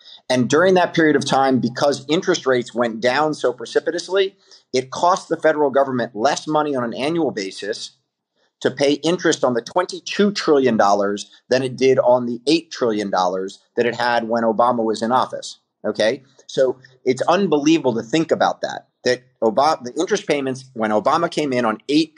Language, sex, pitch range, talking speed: English, male, 115-155 Hz, 175 wpm